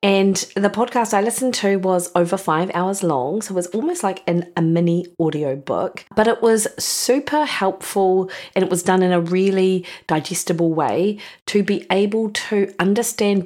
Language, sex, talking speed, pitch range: English, female, 180 wpm, 170-200 Hz